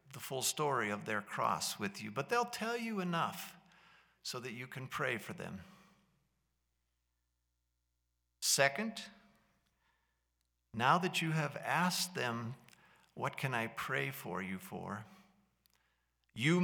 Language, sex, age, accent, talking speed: English, male, 50-69, American, 125 wpm